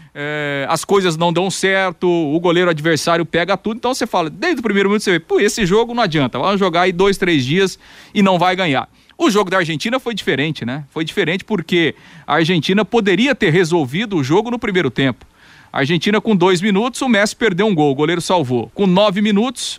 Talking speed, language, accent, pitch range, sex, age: 210 wpm, Portuguese, Brazilian, 140-200 Hz, male, 40-59